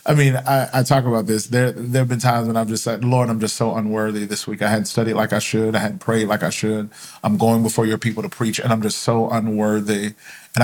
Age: 40-59